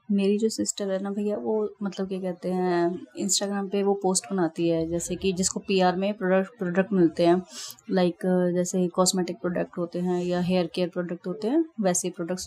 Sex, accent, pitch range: female, native, 180-210 Hz